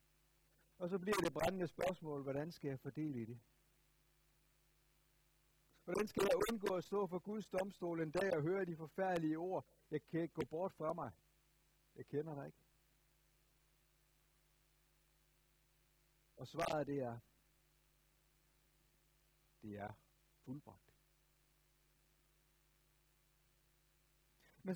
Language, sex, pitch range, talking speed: Danish, male, 155-170 Hz, 115 wpm